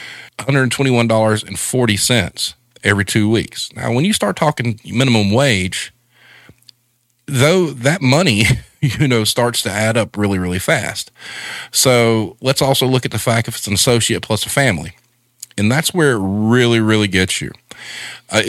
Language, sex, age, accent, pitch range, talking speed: English, male, 40-59, American, 100-130 Hz, 145 wpm